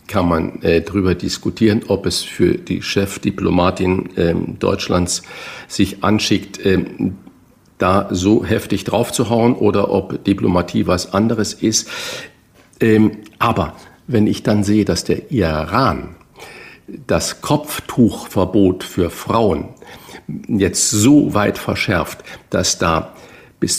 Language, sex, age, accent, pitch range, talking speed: German, male, 50-69, German, 90-110 Hz, 115 wpm